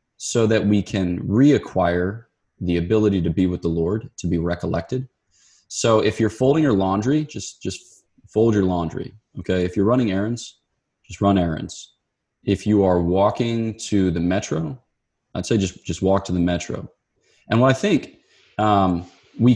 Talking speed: 170 wpm